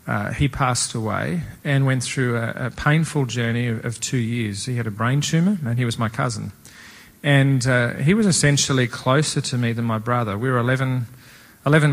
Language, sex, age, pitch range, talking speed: English, male, 40-59, 120-140 Hz, 200 wpm